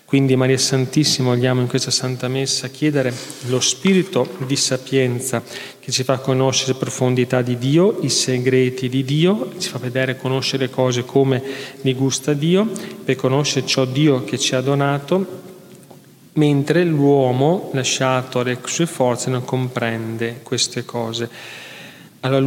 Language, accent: Italian, native